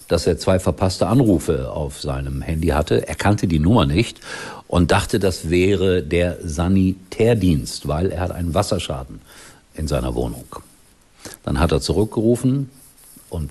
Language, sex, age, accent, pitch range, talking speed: German, male, 50-69, German, 85-115 Hz, 145 wpm